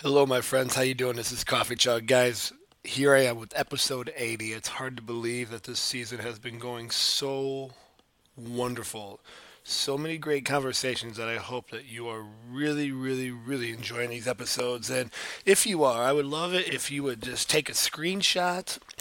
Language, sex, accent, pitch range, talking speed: English, male, American, 115-140 Hz, 190 wpm